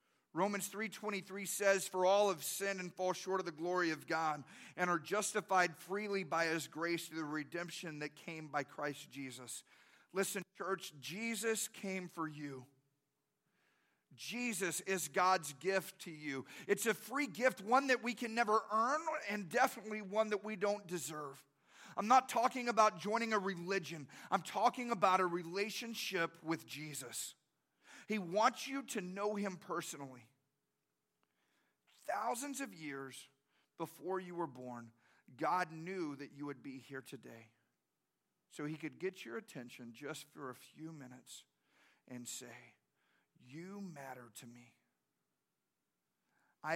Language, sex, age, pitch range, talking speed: English, male, 40-59, 145-205 Hz, 145 wpm